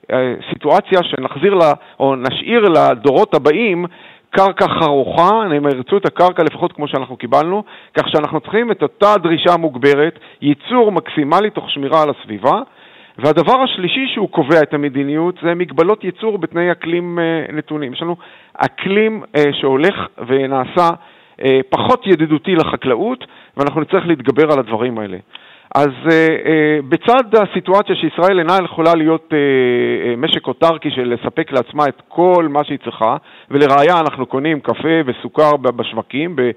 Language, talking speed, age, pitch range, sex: Hebrew, 135 wpm, 50-69, 140-185 Hz, male